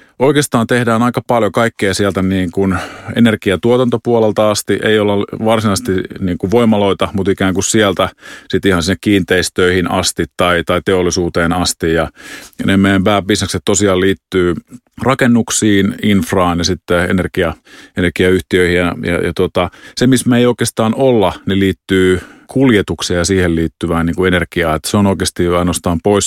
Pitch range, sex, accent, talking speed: 90-105 Hz, male, native, 145 wpm